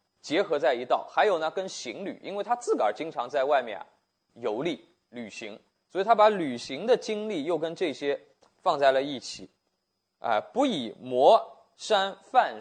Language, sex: Chinese, male